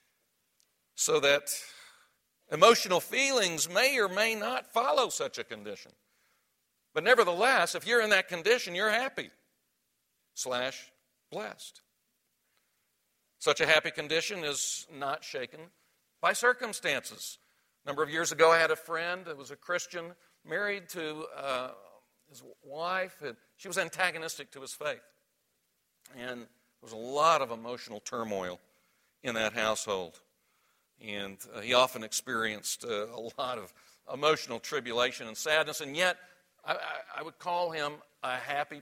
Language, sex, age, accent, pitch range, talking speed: English, male, 60-79, American, 130-180 Hz, 140 wpm